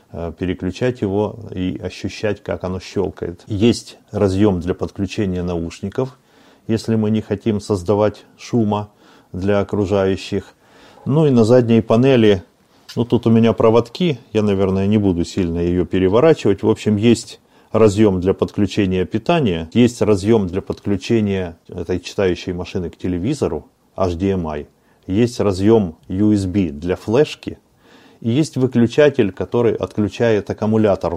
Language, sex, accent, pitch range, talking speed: Russian, male, native, 90-115 Hz, 125 wpm